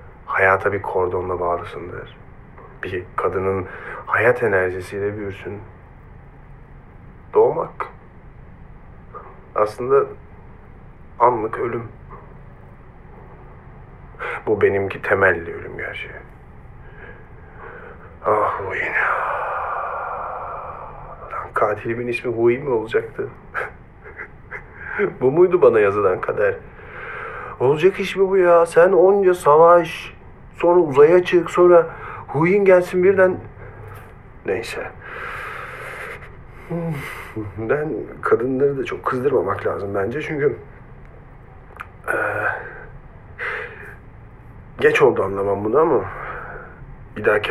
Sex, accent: male, native